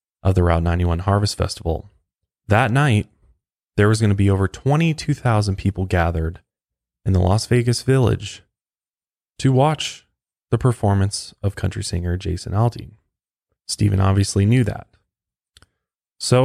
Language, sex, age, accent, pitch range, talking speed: English, male, 20-39, American, 90-115 Hz, 130 wpm